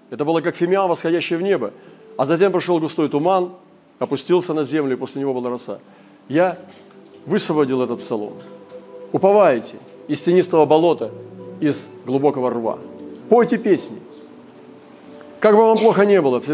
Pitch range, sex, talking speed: 140-185 Hz, male, 145 wpm